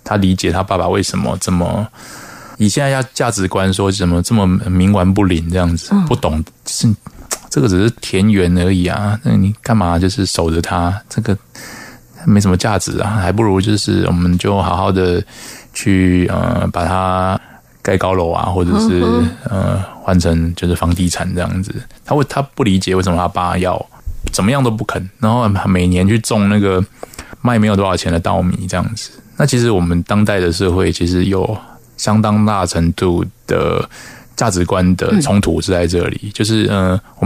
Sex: male